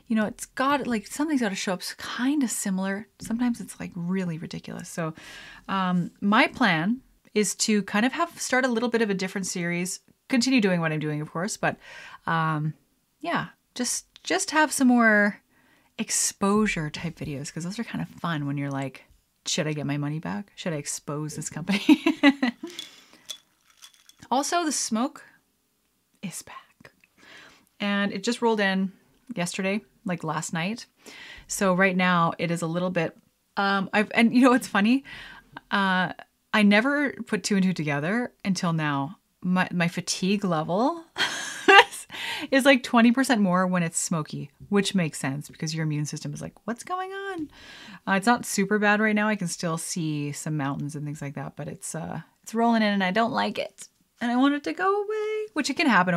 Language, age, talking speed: English, 30-49, 185 wpm